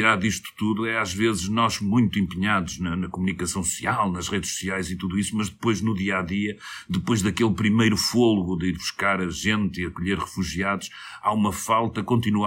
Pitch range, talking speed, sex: 90-105 Hz, 190 wpm, male